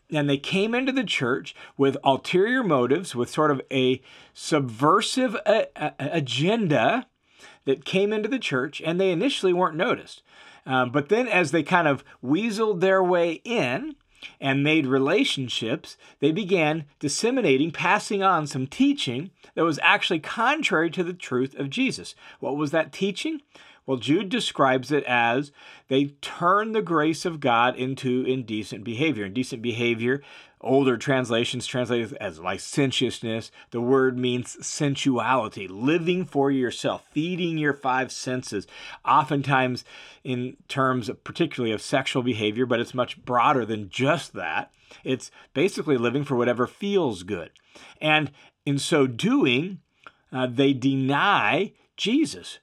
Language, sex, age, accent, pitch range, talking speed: English, male, 40-59, American, 130-180 Hz, 140 wpm